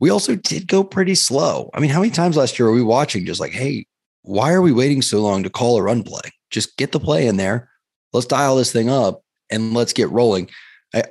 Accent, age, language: American, 30-49, English